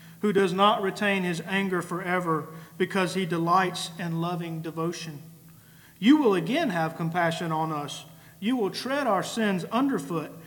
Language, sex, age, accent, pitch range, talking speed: English, male, 40-59, American, 155-200 Hz, 150 wpm